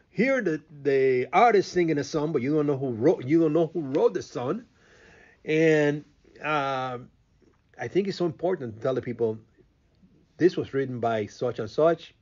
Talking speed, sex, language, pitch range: 185 wpm, male, English, 120-150 Hz